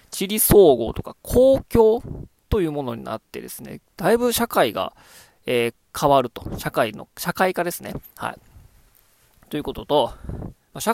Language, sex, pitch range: Japanese, male, 125-195 Hz